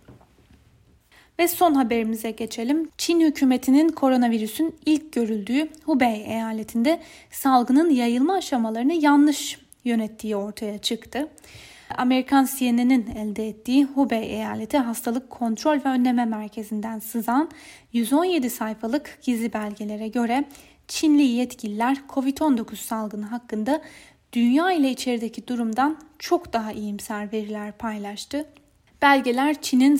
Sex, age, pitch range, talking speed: female, 10-29, 225-285 Hz, 100 wpm